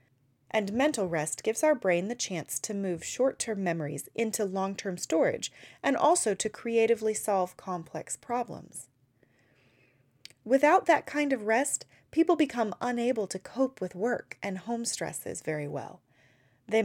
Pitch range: 175-240 Hz